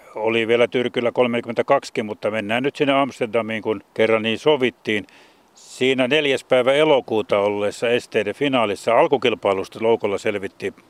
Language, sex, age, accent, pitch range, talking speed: Finnish, male, 60-79, native, 105-120 Hz, 125 wpm